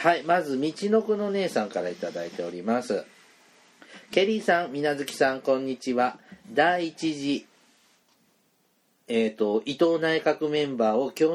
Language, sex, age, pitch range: Japanese, male, 40-59, 130-170 Hz